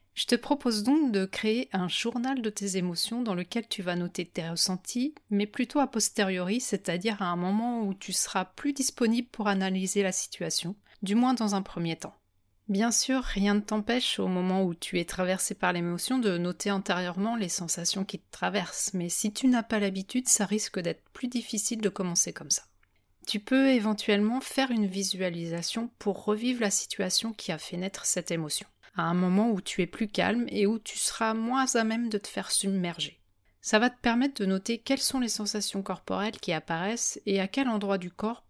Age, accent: 30-49, French